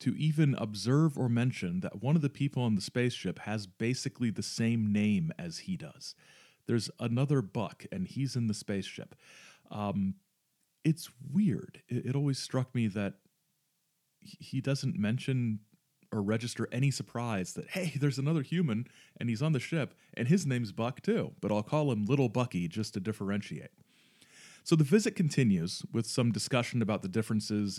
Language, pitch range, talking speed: English, 105-155 Hz, 170 wpm